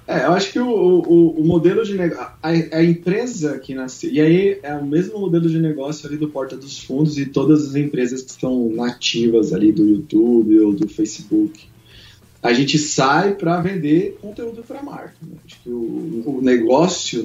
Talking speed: 190 wpm